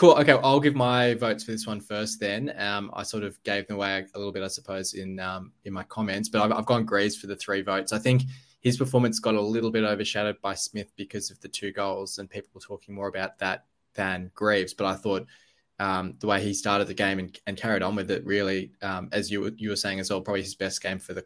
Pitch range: 100-110 Hz